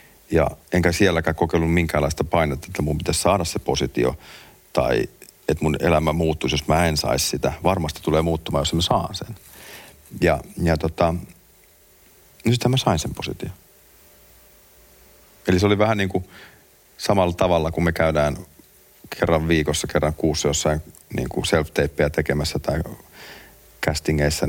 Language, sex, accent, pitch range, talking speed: Finnish, male, native, 75-90 Hz, 145 wpm